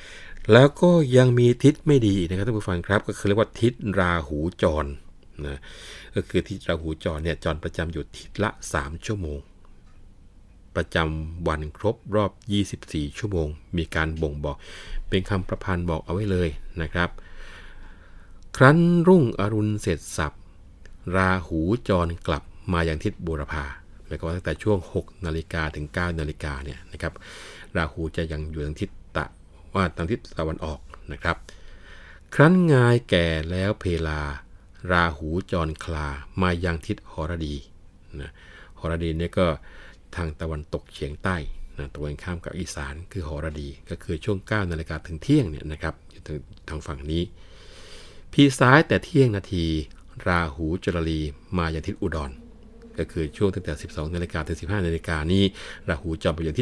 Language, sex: Thai, male